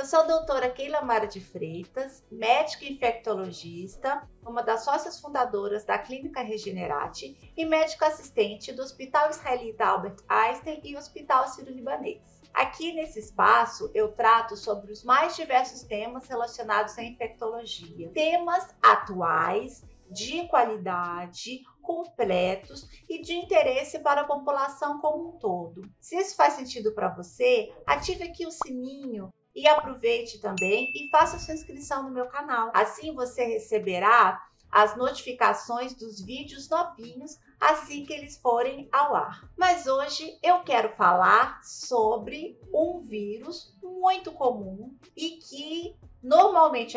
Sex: female